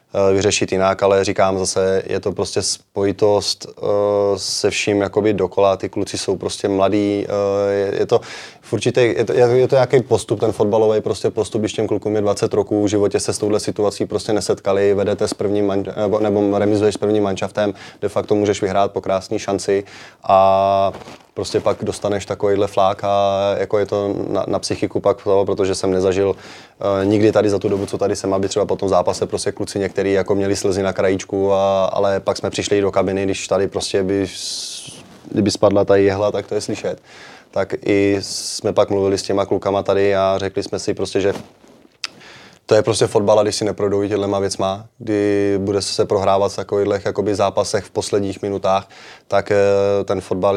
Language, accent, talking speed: Czech, native, 180 wpm